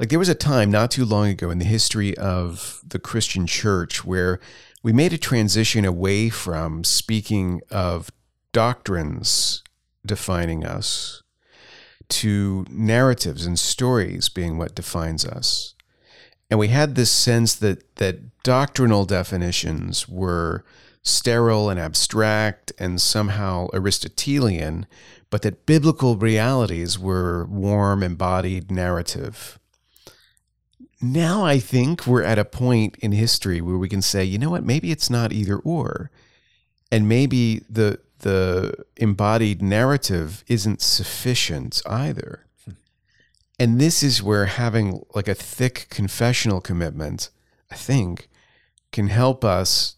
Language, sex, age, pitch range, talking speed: English, male, 40-59, 95-120 Hz, 125 wpm